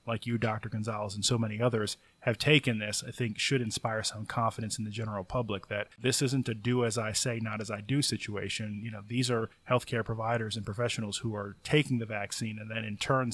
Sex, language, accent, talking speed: male, English, American, 200 wpm